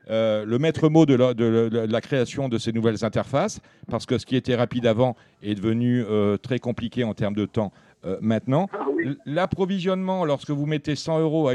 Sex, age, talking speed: male, 50-69, 195 wpm